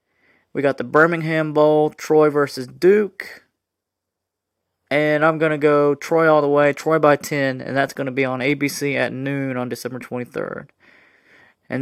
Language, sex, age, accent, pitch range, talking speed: English, male, 30-49, American, 130-150 Hz, 170 wpm